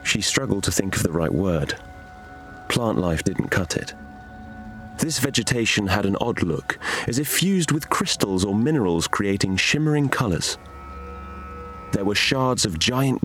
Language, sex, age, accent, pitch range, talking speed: English, male, 30-49, British, 90-130 Hz, 155 wpm